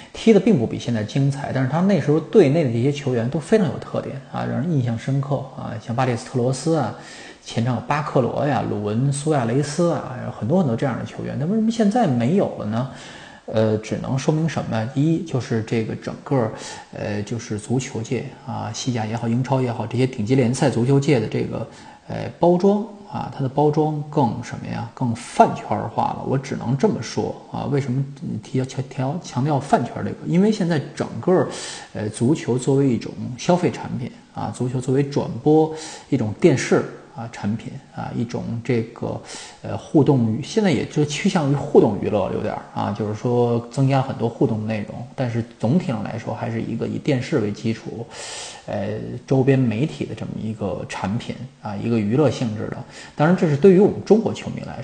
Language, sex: Chinese, male